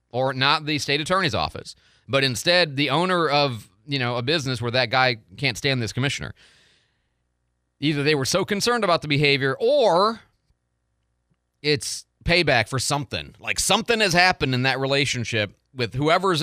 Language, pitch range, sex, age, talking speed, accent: English, 110-155 Hz, male, 30-49, 160 wpm, American